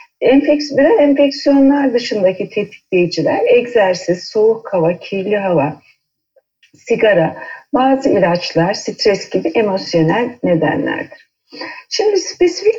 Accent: native